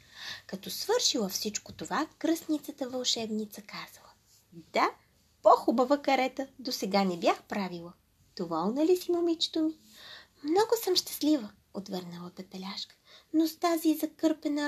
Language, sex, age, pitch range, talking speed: Bulgarian, female, 20-39, 190-295 Hz, 115 wpm